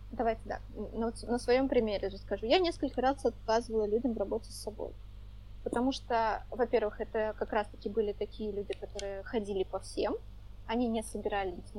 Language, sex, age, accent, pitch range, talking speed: Russian, female, 20-39, native, 195-240 Hz, 165 wpm